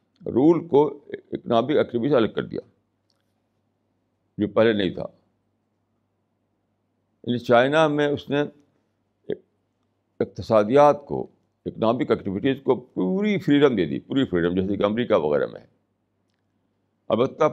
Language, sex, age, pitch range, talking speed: Urdu, male, 60-79, 100-125 Hz, 115 wpm